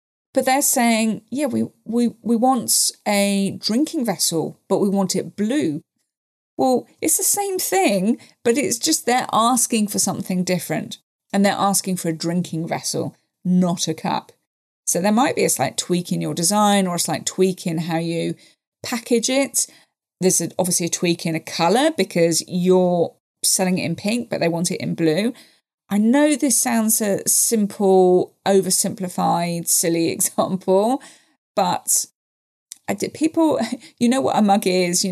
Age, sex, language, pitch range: 30-49, female, English, 170-225 Hz